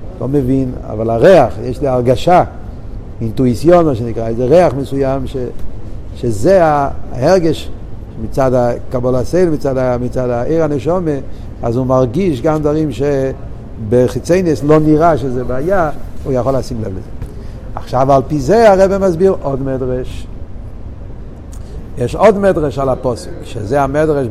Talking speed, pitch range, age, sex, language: 130 wpm, 115-155 Hz, 60-79, male, Hebrew